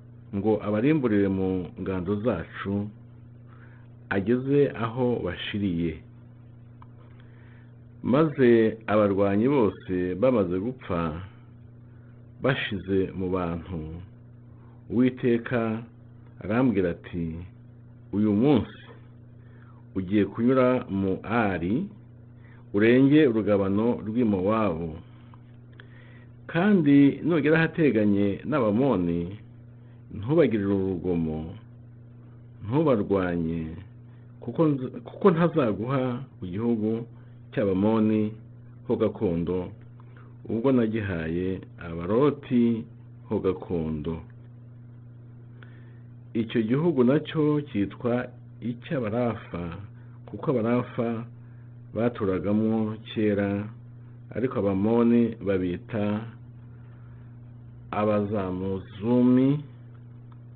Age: 50-69